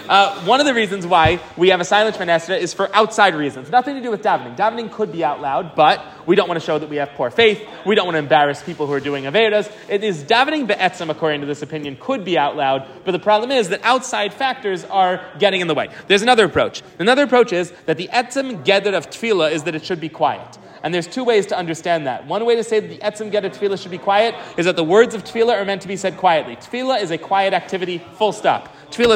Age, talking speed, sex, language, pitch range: 30-49, 260 wpm, male, English, 170-220 Hz